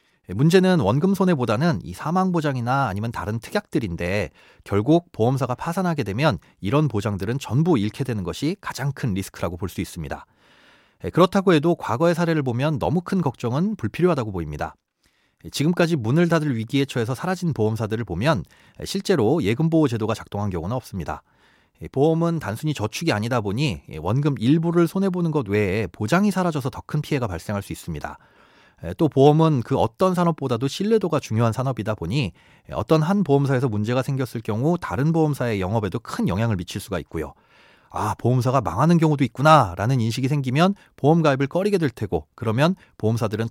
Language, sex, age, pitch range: Korean, male, 30-49, 110-160 Hz